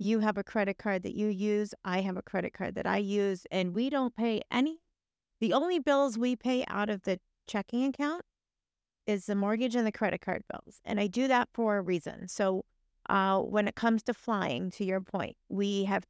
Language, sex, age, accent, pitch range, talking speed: English, female, 40-59, American, 195-240 Hz, 215 wpm